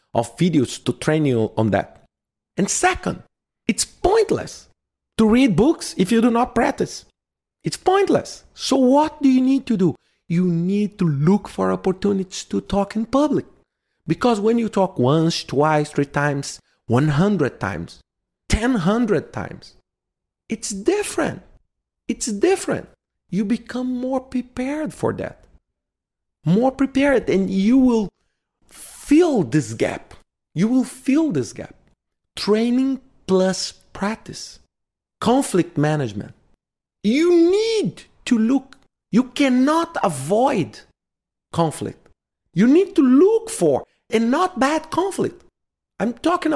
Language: English